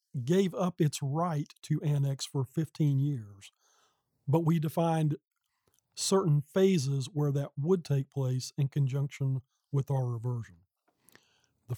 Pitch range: 135-160 Hz